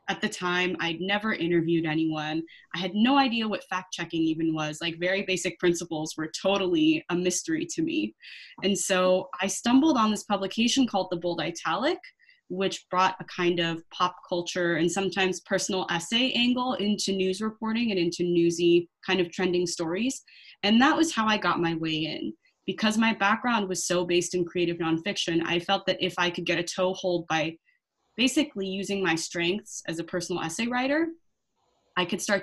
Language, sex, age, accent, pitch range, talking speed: English, female, 20-39, American, 170-200 Hz, 180 wpm